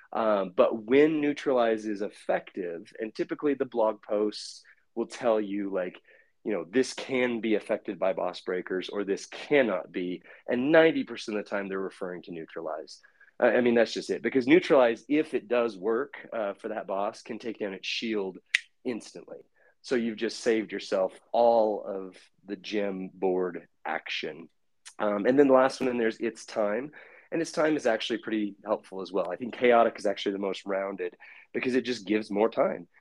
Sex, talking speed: male, 185 wpm